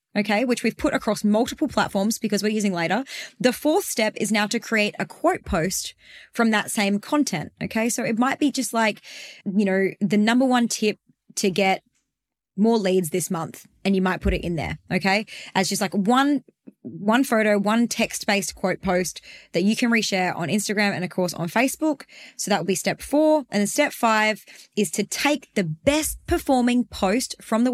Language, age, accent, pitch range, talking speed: English, 20-39, Australian, 190-250 Hz, 200 wpm